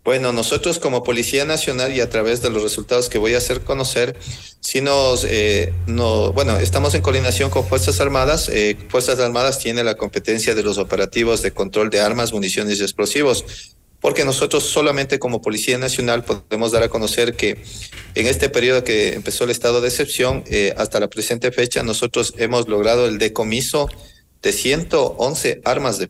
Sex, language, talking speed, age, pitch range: male, Spanish, 175 wpm, 40-59, 105-125 Hz